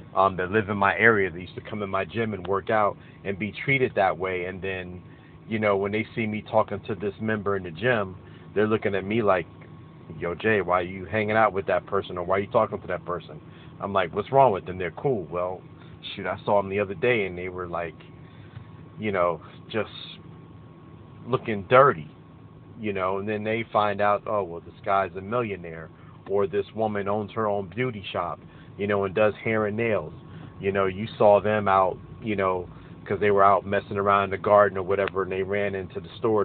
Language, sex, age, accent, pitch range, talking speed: English, male, 40-59, American, 95-110 Hz, 225 wpm